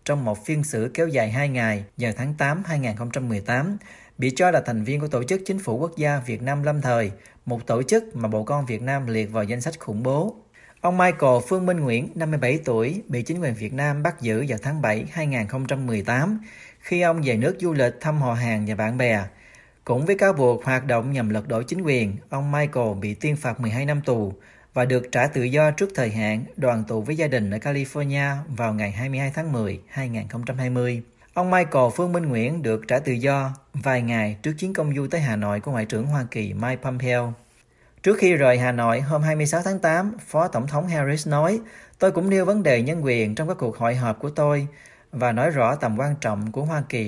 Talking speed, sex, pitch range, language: 220 wpm, male, 115-155 Hz, Vietnamese